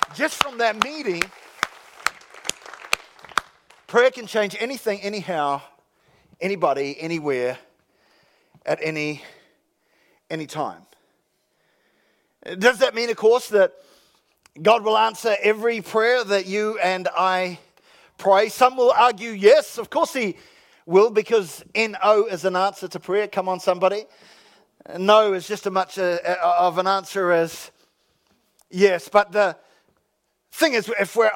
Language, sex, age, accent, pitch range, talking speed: English, male, 40-59, Australian, 195-245 Hz, 130 wpm